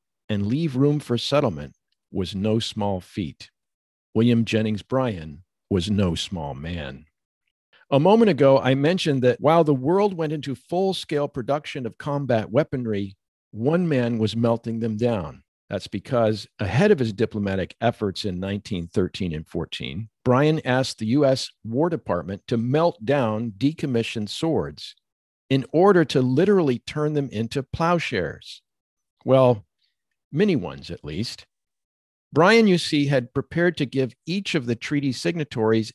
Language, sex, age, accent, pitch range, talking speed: English, male, 50-69, American, 110-145 Hz, 145 wpm